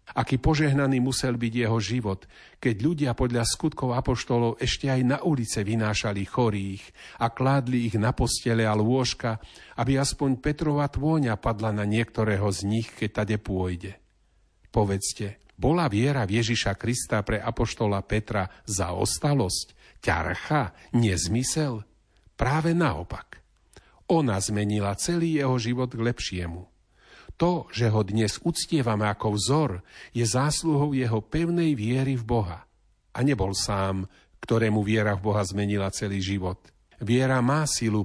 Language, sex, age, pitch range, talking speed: Slovak, male, 50-69, 100-130 Hz, 130 wpm